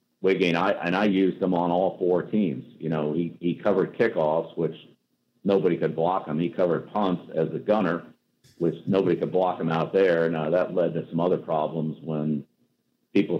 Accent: American